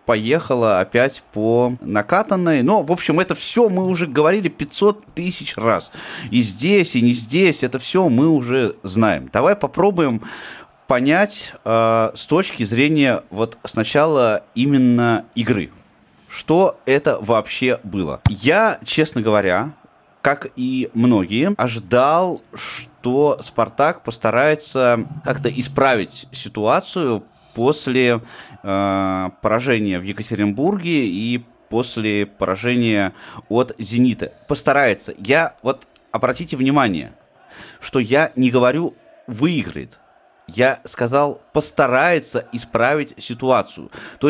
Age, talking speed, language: 20-39, 105 wpm, Russian